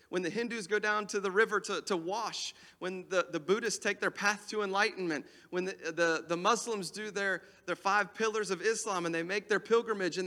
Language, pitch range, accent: English, 150-205 Hz, American